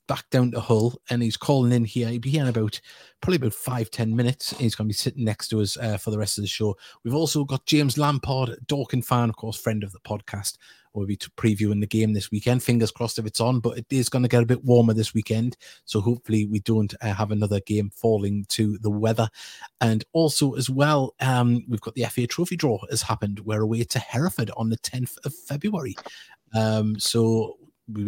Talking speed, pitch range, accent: 230 wpm, 105-125 Hz, British